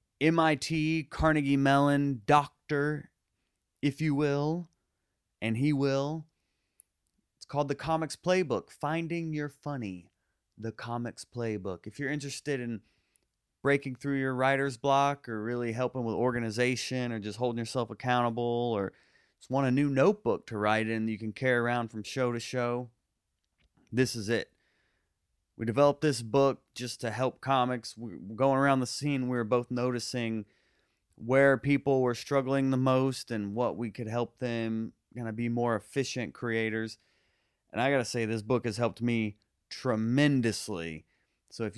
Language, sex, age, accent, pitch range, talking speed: English, male, 30-49, American, 115-140 Hz, 150 wpm